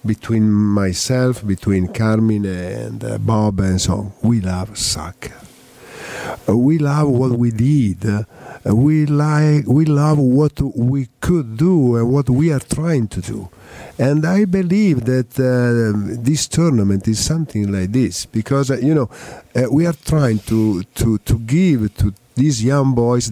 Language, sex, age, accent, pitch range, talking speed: English, male, 50-69, Italian, 105-145 Hz, 150 wpm